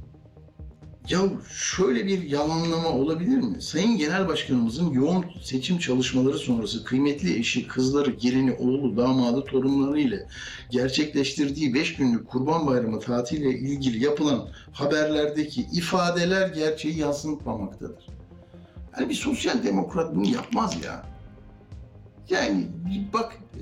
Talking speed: 105 wpm